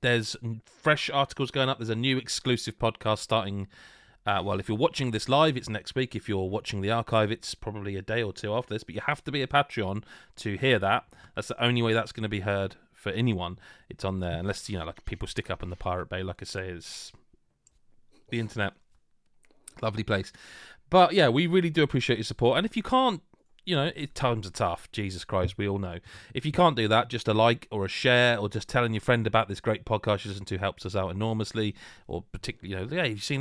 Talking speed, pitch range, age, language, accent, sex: 240 wpm, 100-130 Hz, 30-49, English, British, male